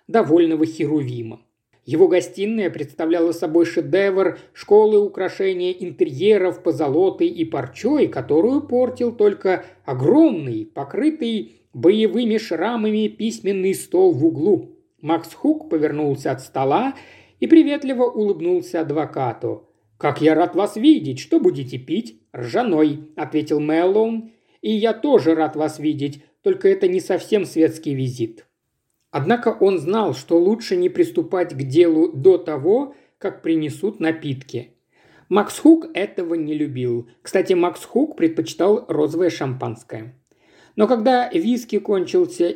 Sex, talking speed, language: male, 120 wpm, Russian